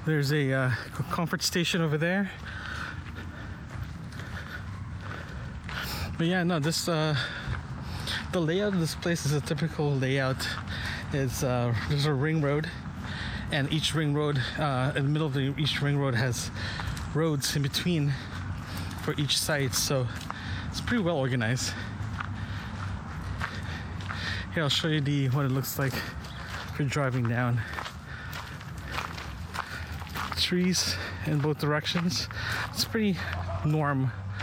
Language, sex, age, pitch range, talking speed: English, male, 20-39, 105-145 Hz, 125 wpm